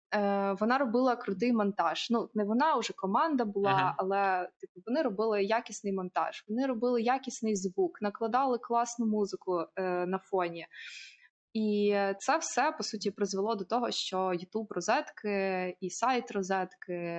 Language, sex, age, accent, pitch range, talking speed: Ukrainian, female, 20-39, native, 195-230 Hz, 140 wpm